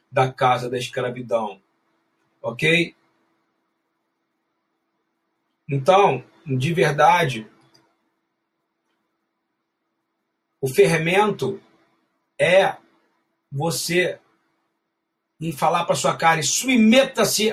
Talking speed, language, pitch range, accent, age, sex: 65 wpm, Portuguese, 140-190 Hz, Brazilian, 40-59, male